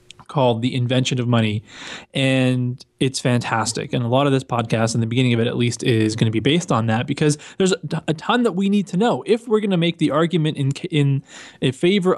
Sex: male